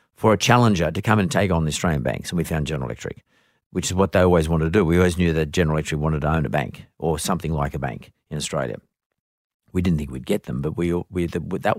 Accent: Australian